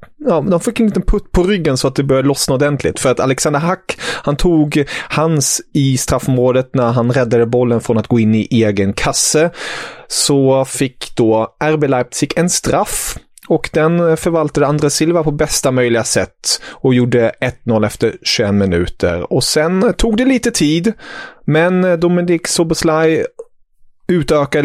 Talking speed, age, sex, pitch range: 160 wpm, 30-49, male, 130-170 Hz